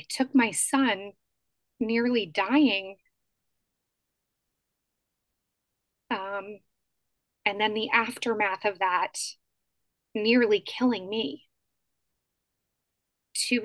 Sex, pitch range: female, 185-225 Hz